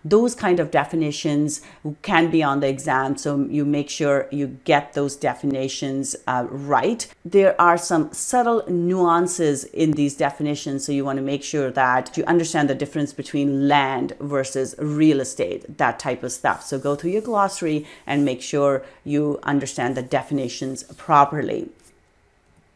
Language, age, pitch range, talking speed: English, 40-59, 140-175 Hz, 155 wpm